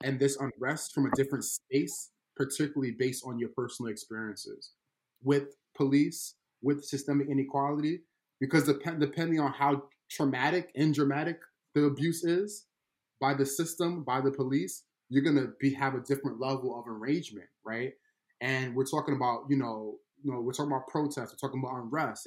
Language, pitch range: English, 120-145 Hz